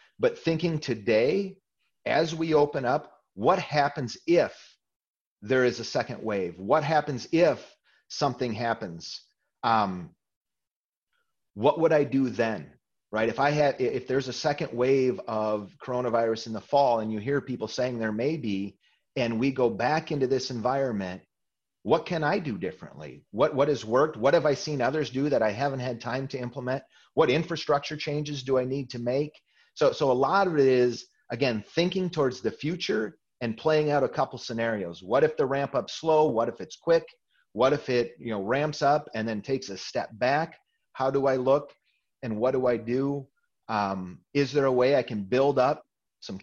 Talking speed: 185 wpm